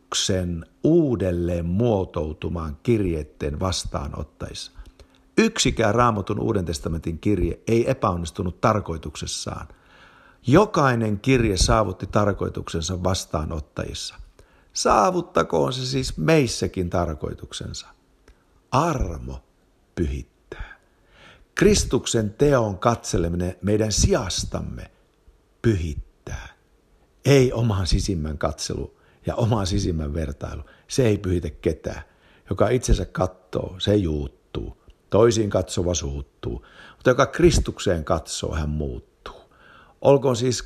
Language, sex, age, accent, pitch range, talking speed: Finnish, male, 60-79, native, 85-115 Hz, 85 wpm